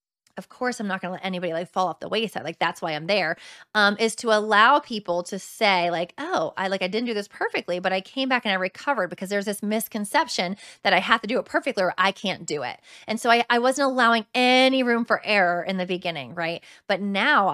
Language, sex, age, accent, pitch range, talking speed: English, female, 20-39, American, 190-230 Hz, 250 wpm